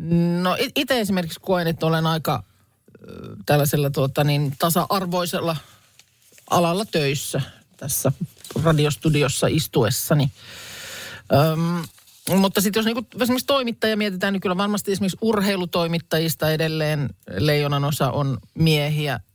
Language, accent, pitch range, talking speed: Finnish, native, 135-180 Hz, 105 wpm